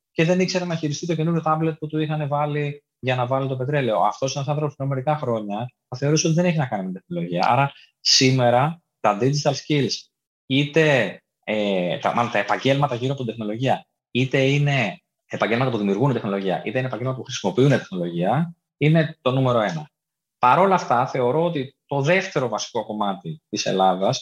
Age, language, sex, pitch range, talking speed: 20-39, Greek, male, 110-160 Hz, 190 wpm